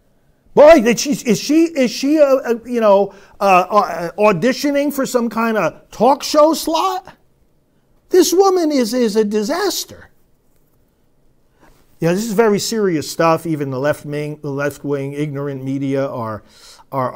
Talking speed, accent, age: 150 wpm, American, 50-69